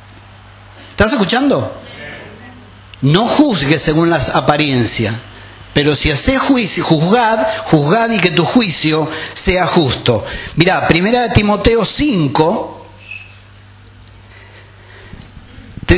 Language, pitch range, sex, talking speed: Spanish, 110-190 Hz, male, 95 wpm